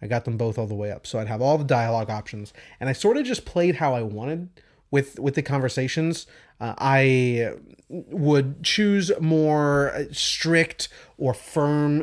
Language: English